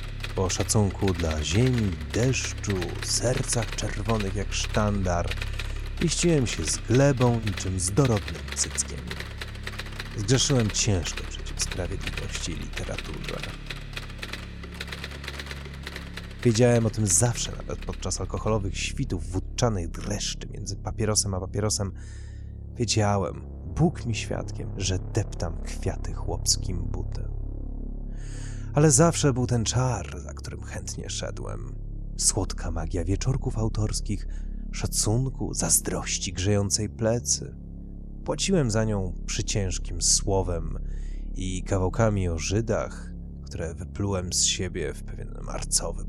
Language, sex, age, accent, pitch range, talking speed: Polish, male, 30-49, native, 90-110 Hz, 100 wpm